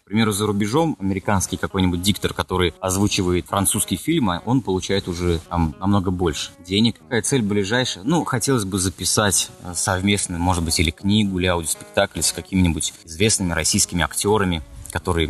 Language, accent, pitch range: Russian, native, 90-120 Hz